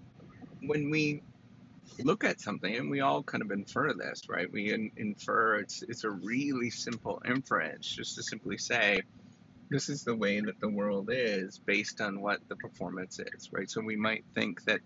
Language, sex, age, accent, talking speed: English, male, 30-49, American, 185 wpm